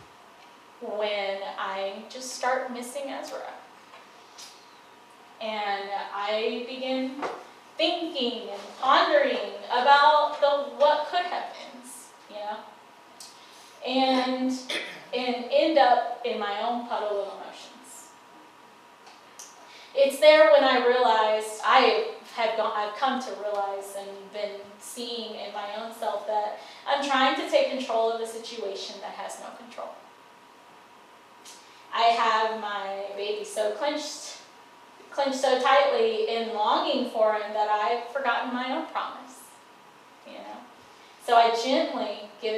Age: 10-29